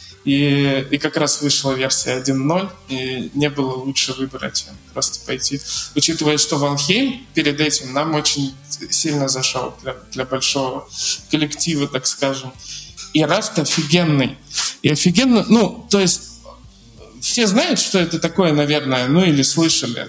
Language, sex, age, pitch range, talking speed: Russian, male, 20-39, 140-180 Hz, 140 wpm